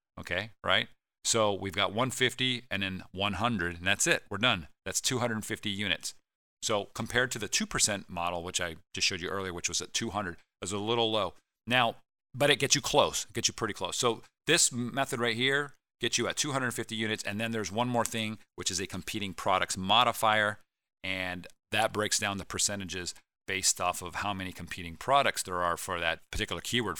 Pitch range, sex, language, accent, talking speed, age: 90-115 Hz, male, English, American, 200 wpm, 40-59